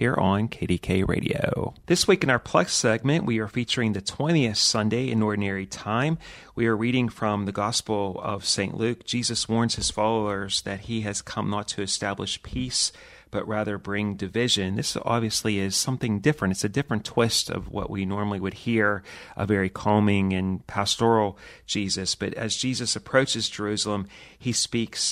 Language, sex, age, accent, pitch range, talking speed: English, male, 30-49, American, 100-115 Hz, 170 wpm